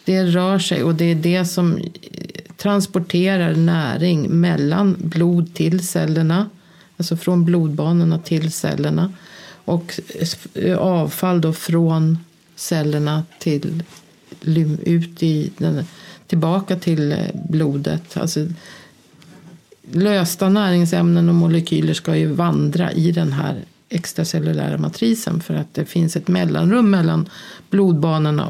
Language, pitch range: Swedish, 165-185 Hz